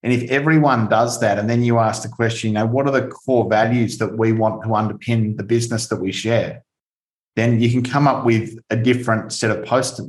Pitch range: 110-125 Hz